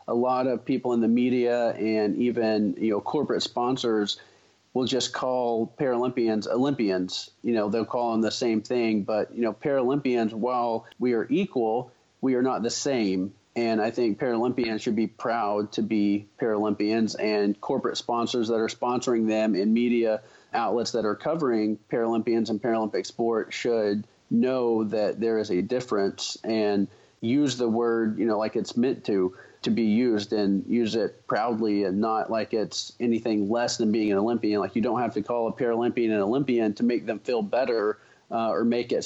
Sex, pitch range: male, 105-120 Hz